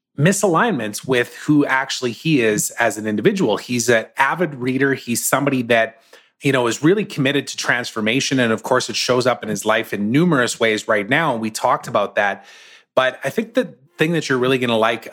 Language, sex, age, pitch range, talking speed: English, male, 30-49, 115-145 Hz, 210 wpm